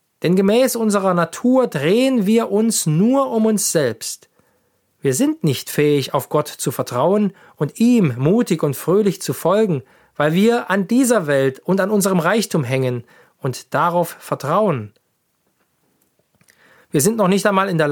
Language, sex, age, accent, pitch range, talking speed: German, male, 40-59, German, 140-195 Hz, 155 wpm